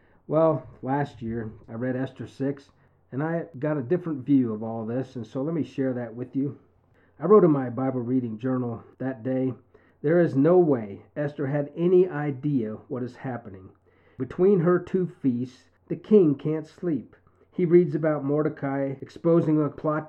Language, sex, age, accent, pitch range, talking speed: English, male, 40-59, American, 125-170 Hz, 175 wpm